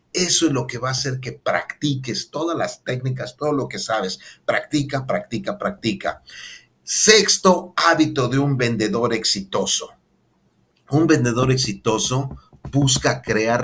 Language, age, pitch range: Spanish, 50-69, 120-155 Hz